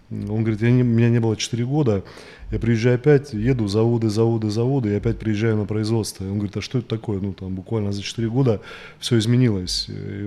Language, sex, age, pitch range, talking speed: Russian, male, 20-39, 100-115 Hz, 205 wpm